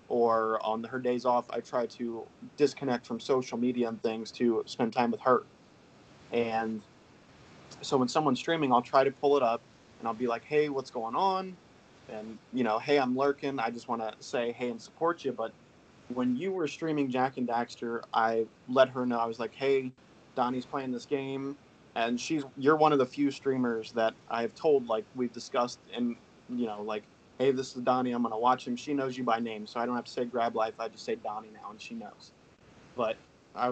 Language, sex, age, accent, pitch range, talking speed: English, male, 20-39, American, 115-135 Hz, 215 wpm